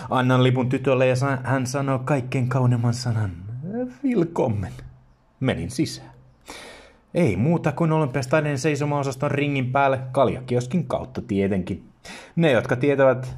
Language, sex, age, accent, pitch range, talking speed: Finnish, male, 30-49, native, 110-135 Hz, 110 wpm